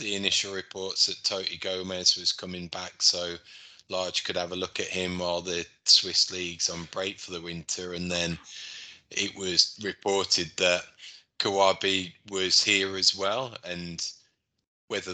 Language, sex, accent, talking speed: English, male, British, 155 wpm